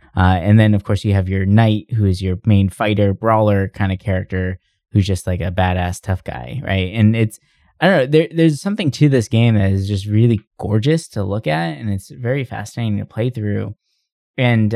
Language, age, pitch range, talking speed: English, 20-39, 100-125 Hz, 210 wpm